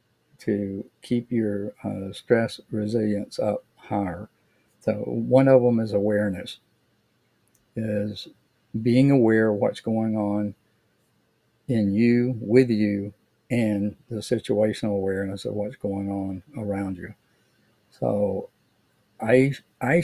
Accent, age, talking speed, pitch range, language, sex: American, 50-69, 115 wpm, 105-115 Hz, English, male